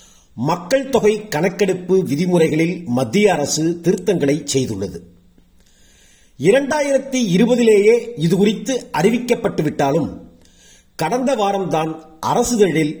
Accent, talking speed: native, 70 wpm